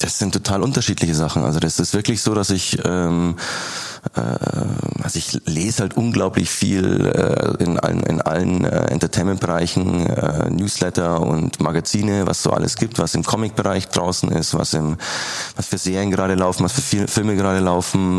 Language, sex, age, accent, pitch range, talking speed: German, male, 30-49, German, 85-105 Hz, 170 wpm